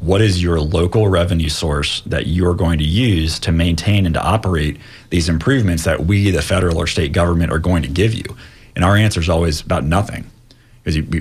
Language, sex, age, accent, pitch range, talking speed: English, male, 30-49, American, 80-105 Hz, 205 wpm